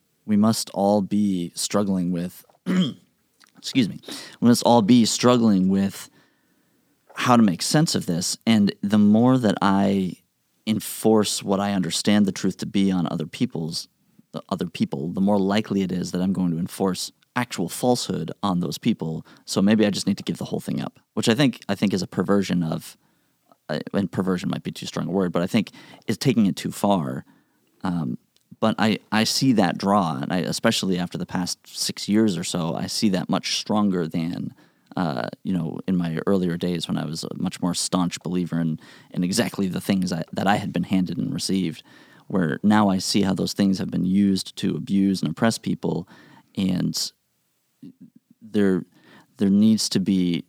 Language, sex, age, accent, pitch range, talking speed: English, male, 30-49, American, 90-105 Hz, 195 wpm